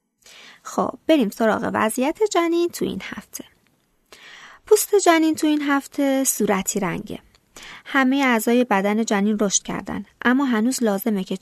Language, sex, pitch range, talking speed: Persian, female, 205-260 Hz, 130 wpm